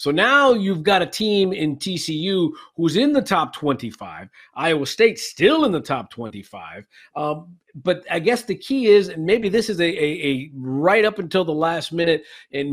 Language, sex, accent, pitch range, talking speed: English, male, American, 145-205 Hz, 195 wpm